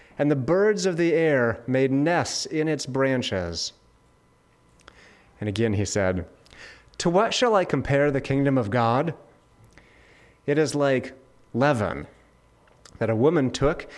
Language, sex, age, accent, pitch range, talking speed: English, male, 30-49, American, 120-150 Hz, 135 wpm